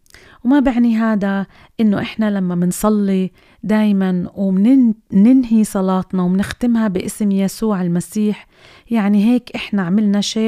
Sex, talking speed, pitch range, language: female, 110 wpm, 195-225 Hz, Arabic